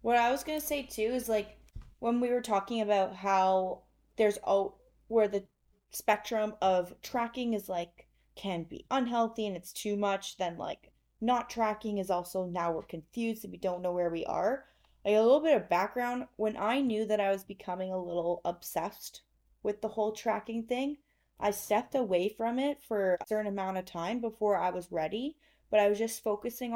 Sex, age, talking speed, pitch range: female, 20-39, 195 wpm, 180-220 Hz